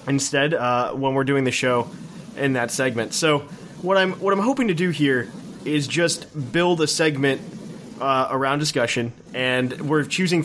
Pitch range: 135-165 Hz